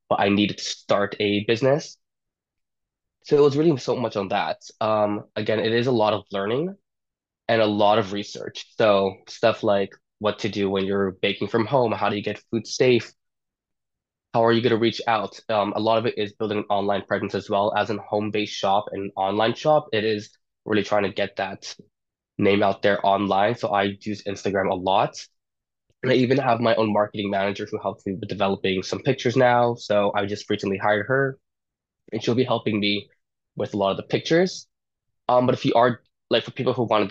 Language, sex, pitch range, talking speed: English, male, 100-115 Hz, 210 wpm